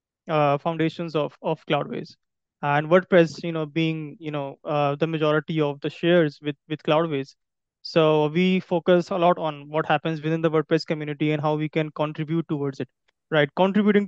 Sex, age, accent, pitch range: male, 20-39, Indian, 150-165 Hz